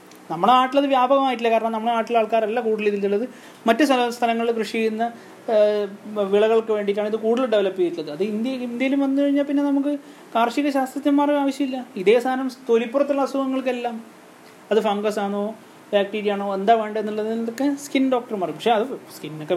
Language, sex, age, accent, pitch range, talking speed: Malayalam, male, 30-49, native, 180-245 Hz, 140 wpm